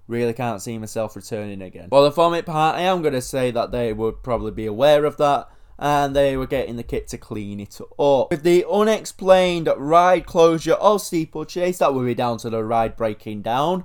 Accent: British